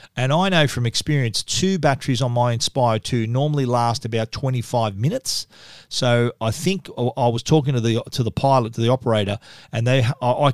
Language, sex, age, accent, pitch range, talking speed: English, male, 40-59, Australian, 120-140 Hz, 190 wpm